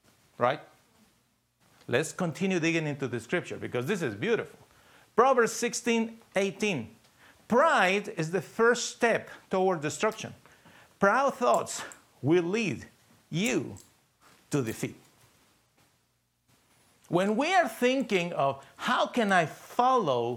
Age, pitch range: 50-69, 125-200 Hz